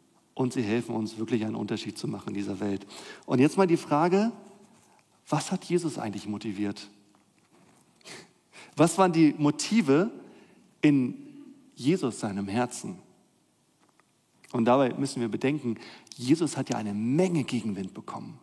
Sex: male